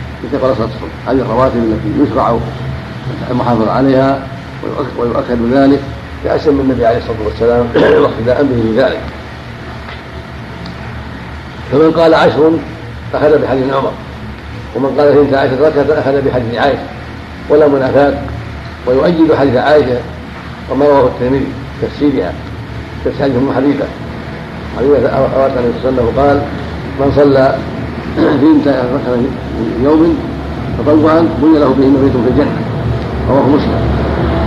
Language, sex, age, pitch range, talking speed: Arabic, male, 50-69, 115-145 Hz, 110 wpm